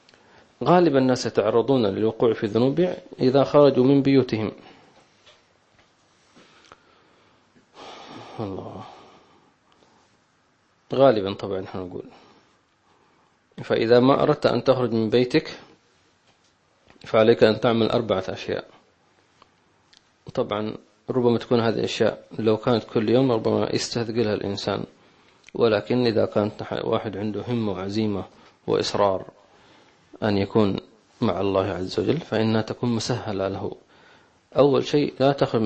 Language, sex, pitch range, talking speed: English, male, 100-120 Hz, 105 wpm